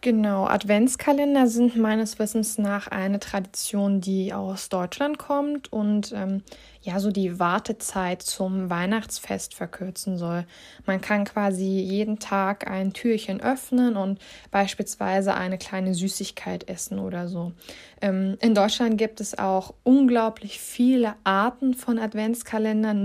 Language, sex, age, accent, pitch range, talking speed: Italian, female, 20-39, German, 190-225 Hz, 130 wpm